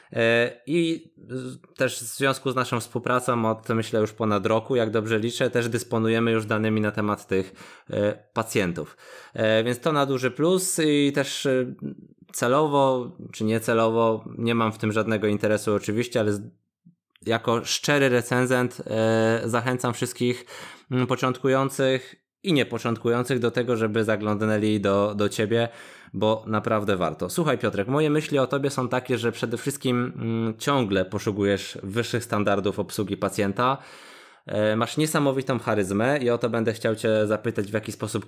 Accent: native